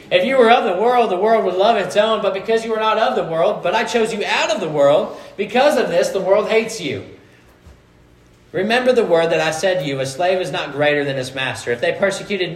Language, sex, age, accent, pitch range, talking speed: English, male, 40-59, American, 150-205 Hz, 260 wpm